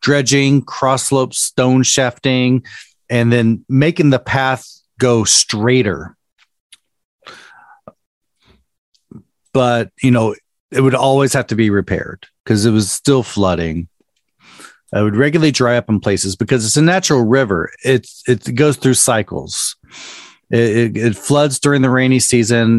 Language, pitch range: English, 105-130 Hz